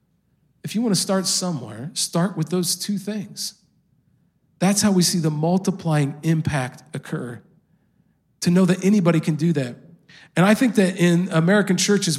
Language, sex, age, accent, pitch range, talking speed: English, male, 40-59, American, 160-200 Hz, 160 wpm